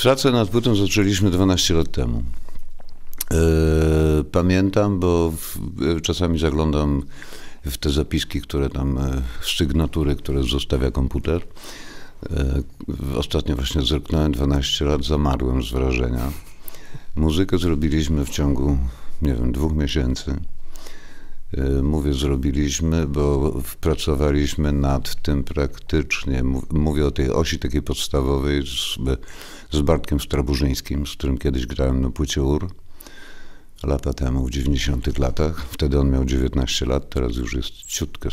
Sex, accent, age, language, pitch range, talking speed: male, native, 50-69, Polish, 70-80 Hz, 115 wpm